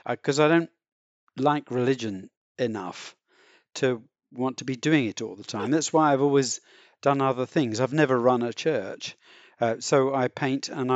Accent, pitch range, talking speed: British, 110-140 Hz, 175 wpm